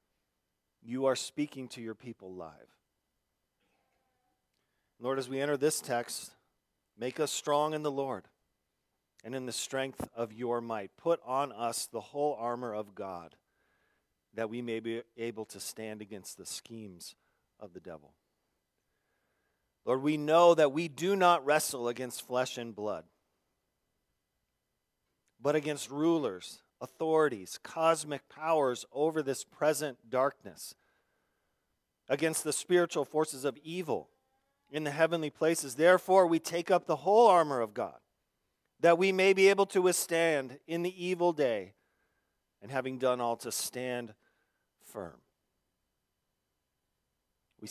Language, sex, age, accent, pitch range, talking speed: English, male, 40-59, American, 110-160 Hz, 135 wpm